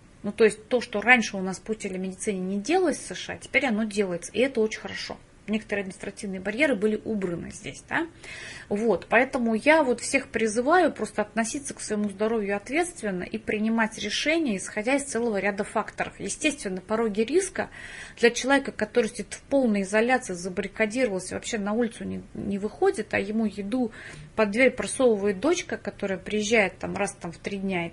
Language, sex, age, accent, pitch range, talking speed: Russian, female, 30-49, native, 200-245 Hz, 175 wpm